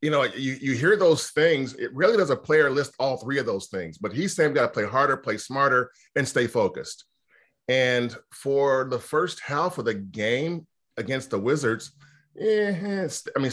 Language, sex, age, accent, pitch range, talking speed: English, male, 30-49, American, 125-165 Hz, 200 wpm